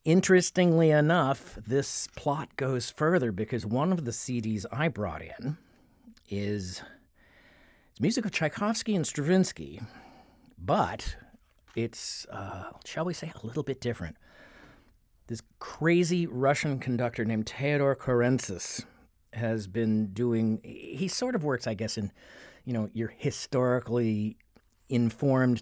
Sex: male